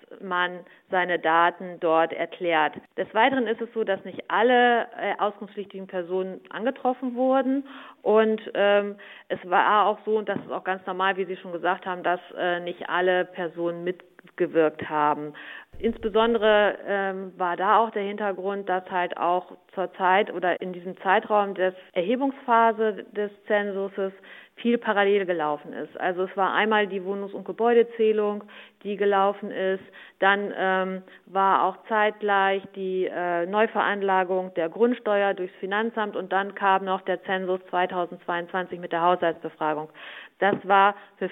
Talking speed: 145 wpm